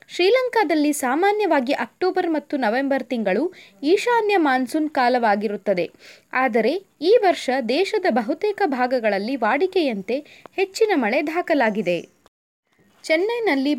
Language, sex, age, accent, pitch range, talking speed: Kannada, female, 20-39, native, 235-350 Hz, 85 wpm